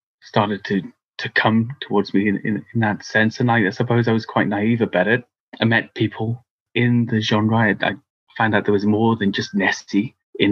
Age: 30-49